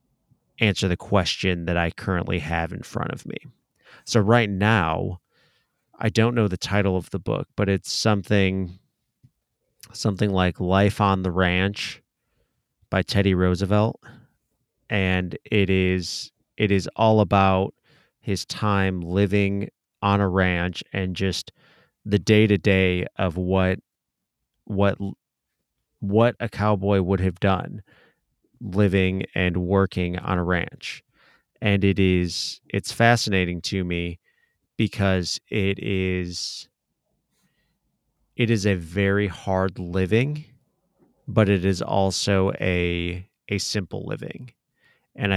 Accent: American